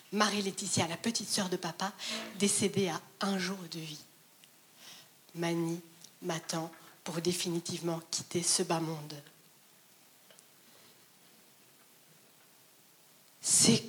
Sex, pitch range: female, 175-235 Hz